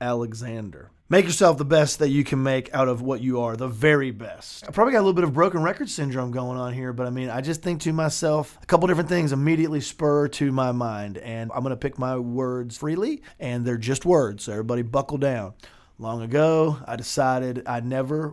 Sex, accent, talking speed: male, American, 225 wpm